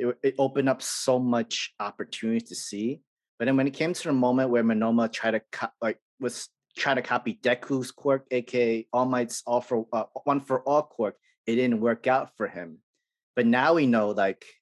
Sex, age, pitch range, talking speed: male, 30-49, 115-150 Hz, 205 wpm